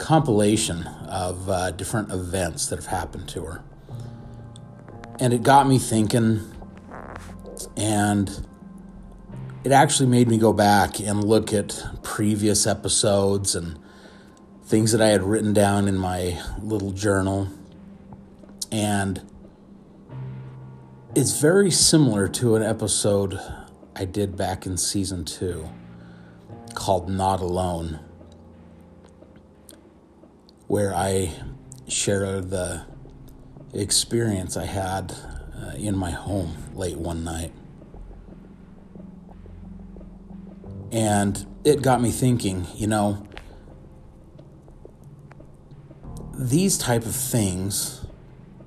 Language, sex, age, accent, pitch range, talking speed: English, male, 30-49, American, 90-115 Hz, 95 wpm